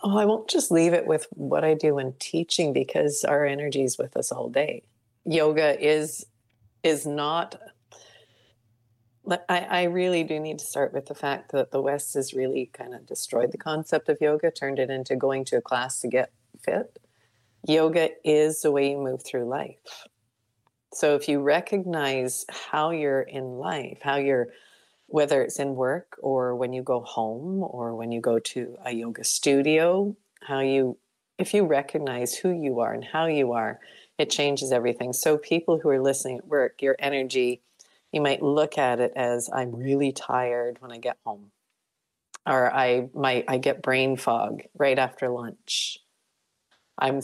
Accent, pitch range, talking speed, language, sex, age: American, 125-155 Hz, 180 wpm, English, female, 40-59